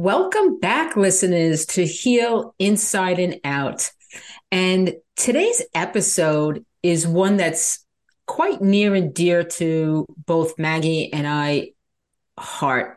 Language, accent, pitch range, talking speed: English, American, 145-185 Hz, 110 wpm